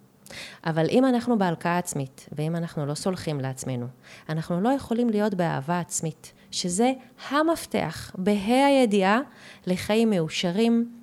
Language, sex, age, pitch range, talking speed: Hebrew, female, 30-49, 160-235 Hz, 120 wpm